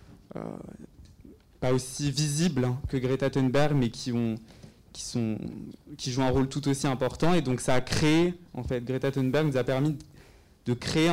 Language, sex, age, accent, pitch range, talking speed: French, male, 20-39, French, 125-145 Hz, 180 wpm